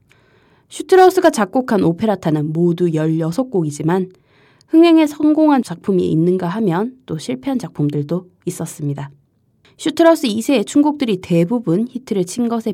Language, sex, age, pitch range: Korean, female, 20-39, 155-220 Hz